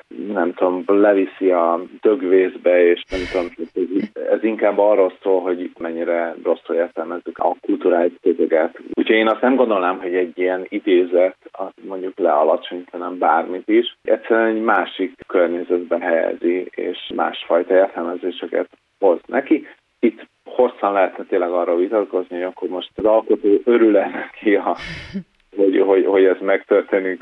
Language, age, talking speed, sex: Hungarian, 30-49, 140 wpm, male